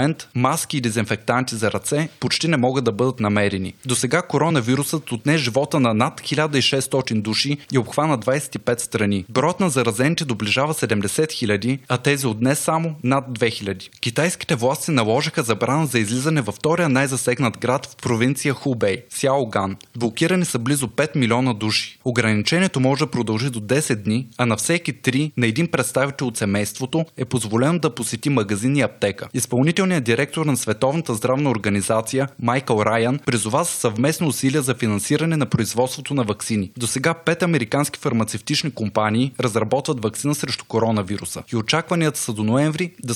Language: Bulgarian